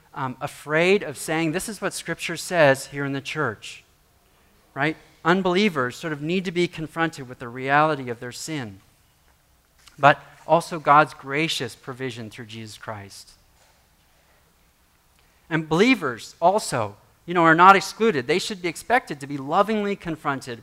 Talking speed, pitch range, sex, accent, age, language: 150 wpm, 120-160 Hz, male, American, 40-59, English